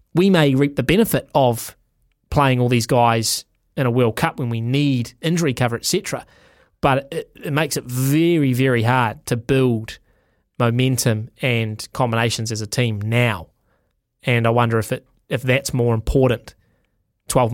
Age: 20-39